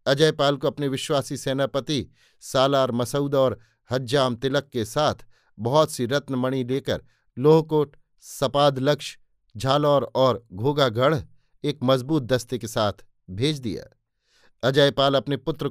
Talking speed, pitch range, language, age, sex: 120 wpm, 120-145 Hz, Hindi, 50-69, male